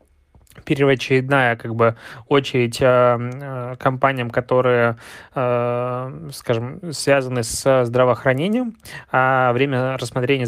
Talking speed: 95 wpm